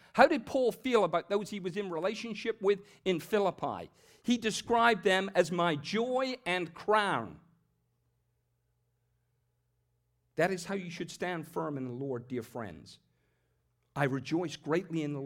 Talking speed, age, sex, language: 150 wpm, 50-69, male, English